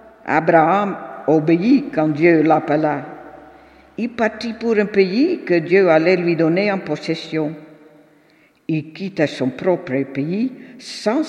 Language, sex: French, female